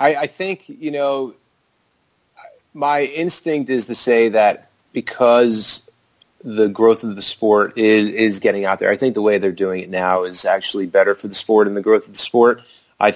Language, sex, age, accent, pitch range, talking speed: English, male, 30-49, American, 105-125 Hz, 190 wpm